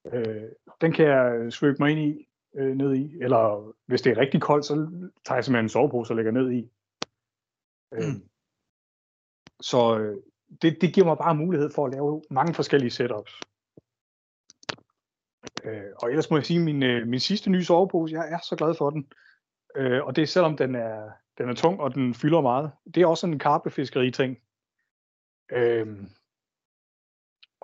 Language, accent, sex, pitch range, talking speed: Danish, native, male, 120-160 Hz, 175 wpm